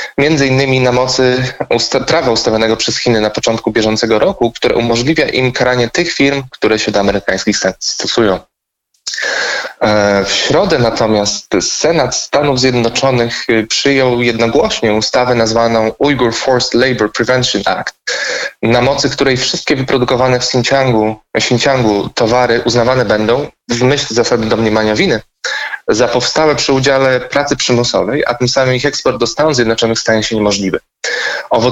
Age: 20-39